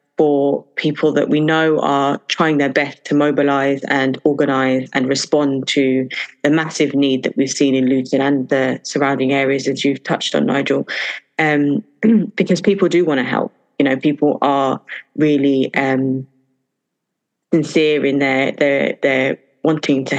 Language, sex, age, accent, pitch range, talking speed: English, female, 20-39, British, 135-150 Hz, 160 wpm